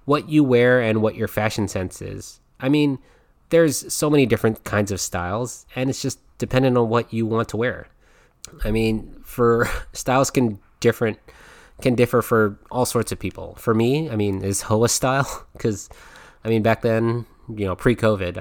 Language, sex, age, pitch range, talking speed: English, male, 20-39, 100-125 Hz, 185 wpm